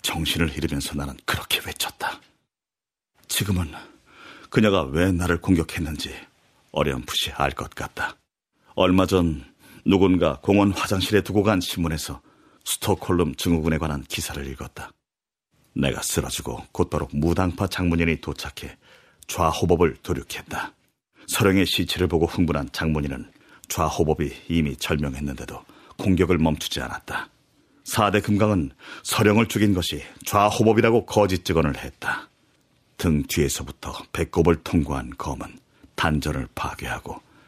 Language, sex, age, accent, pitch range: Korean, male, 40-59, native, 75-95 Hz